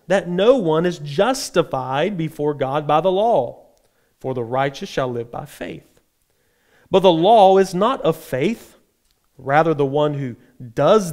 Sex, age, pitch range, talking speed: male, 40-59, 140-190 Hz, 155 wpm